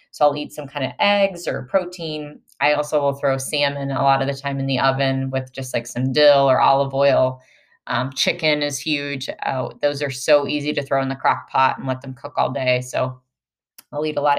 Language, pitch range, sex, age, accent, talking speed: English, 135-155 Hz, female, 20-39, American, 235 wpm